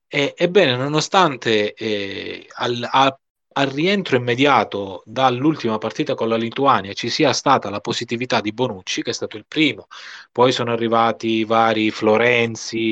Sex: male